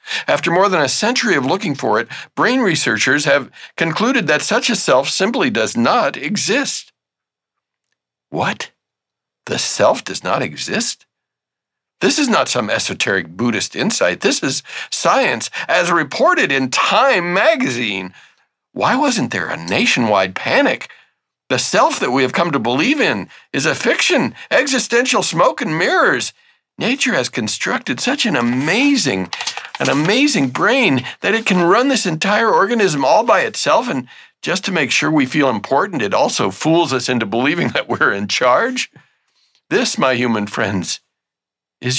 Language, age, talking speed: English, 50-69, 150 wpm